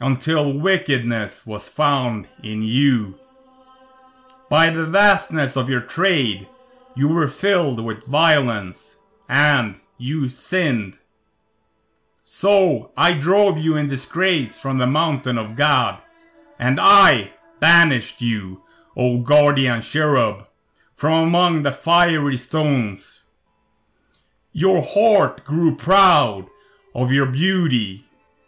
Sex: male